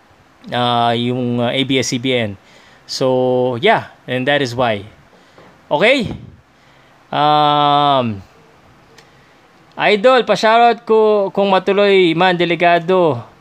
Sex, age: male, 20-39